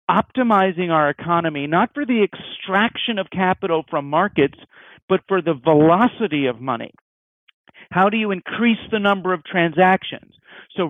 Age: 50-69